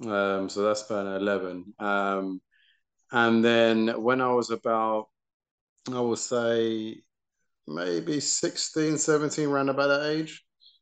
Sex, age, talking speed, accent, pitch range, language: male, 30-49, 120 wpm, British, 105-120 Hz, English